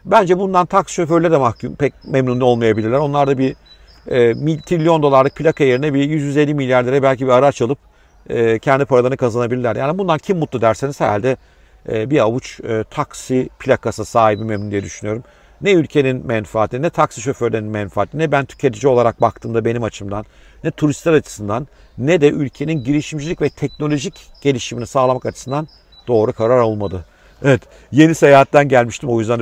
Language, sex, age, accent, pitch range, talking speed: Turkish, male, 50-69, native, 115-150 Hz, 165 wpm